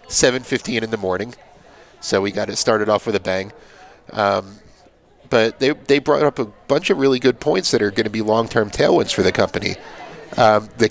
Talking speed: 210 wpm